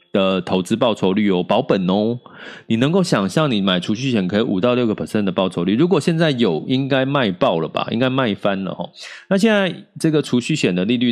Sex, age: male, 30-49